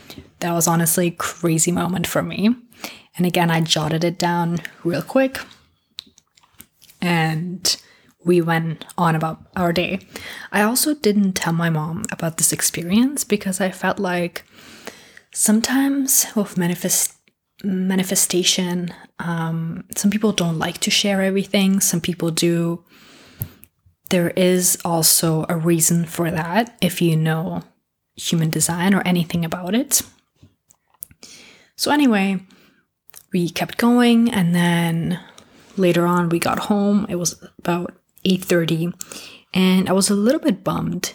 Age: 20-39